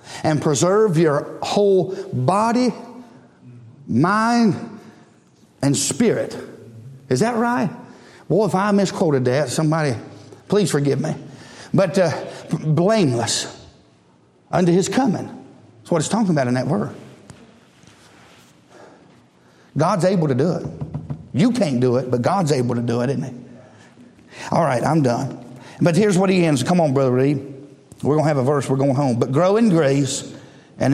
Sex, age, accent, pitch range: male, 50-69, American, 125-170 Hz